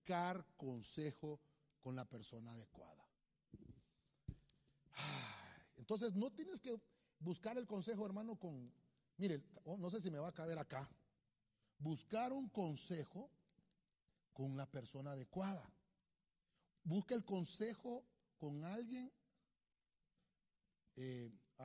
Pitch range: 155-250 Hz